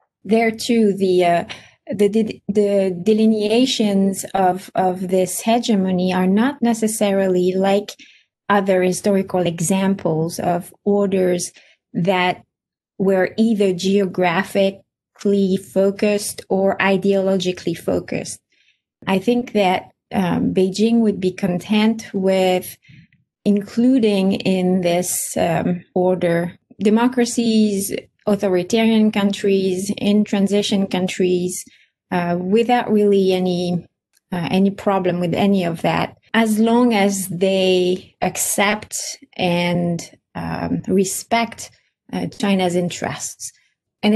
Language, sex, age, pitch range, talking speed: English, female, 20-39, 185-210 Hz, 100 wpm